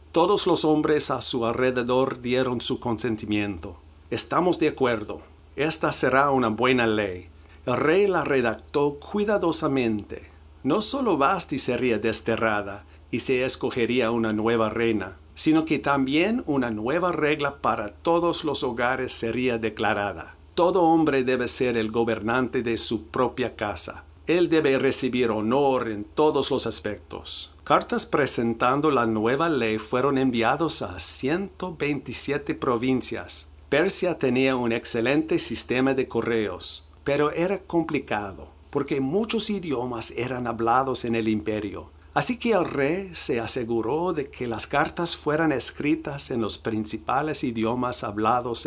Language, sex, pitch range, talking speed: English, male, 110-145 Hz, 135 wpm